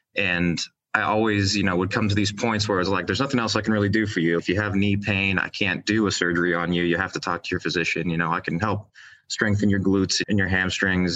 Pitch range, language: 85-100 Hz, English